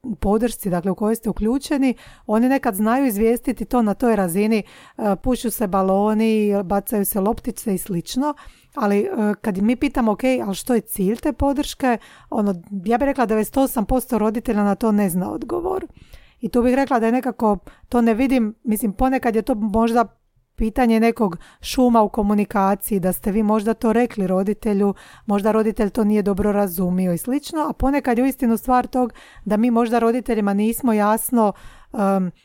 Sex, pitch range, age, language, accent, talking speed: female, 205-250 Hz, 40-59, Croatian, native, 180 wpm